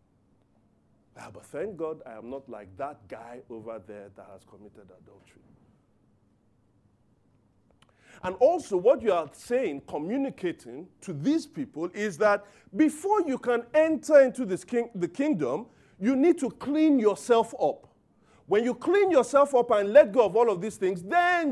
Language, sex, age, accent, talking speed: English, male, 40-59, Nigerian, 160 wpm